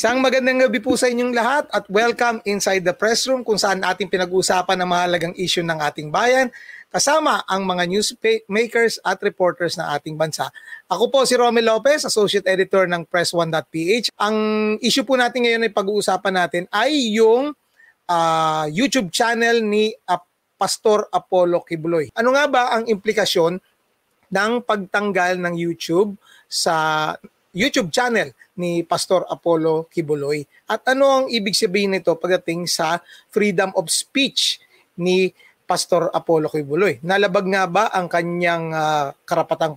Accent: native